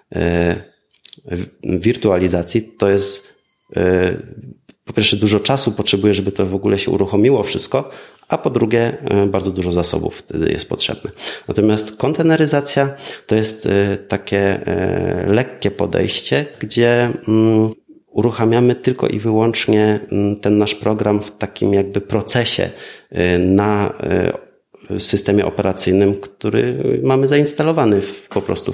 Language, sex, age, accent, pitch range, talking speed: Polish, male, 30-49, native, 95-115 Hz, 125 wpm